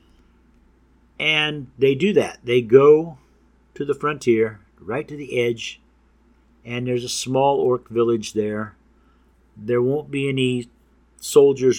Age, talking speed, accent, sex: 50-69, 125 wpm, American, male